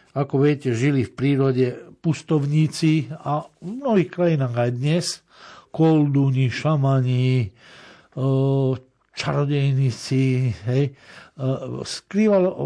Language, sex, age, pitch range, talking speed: Slovak, male, 60-79, 120-150 Hz, 80 wpm